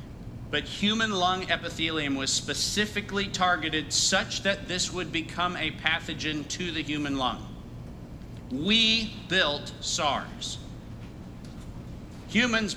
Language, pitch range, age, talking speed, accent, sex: English, 130-180 Hz, 50-69, 105 wpm, American, male